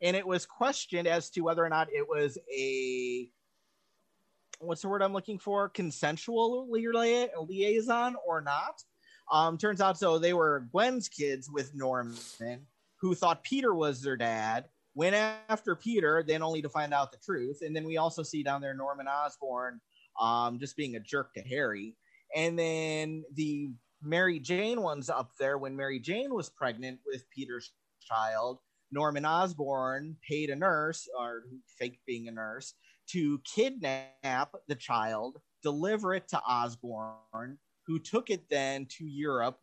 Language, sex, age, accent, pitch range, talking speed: English, male, 30-49, American, 125-165 Hz, 155 wpm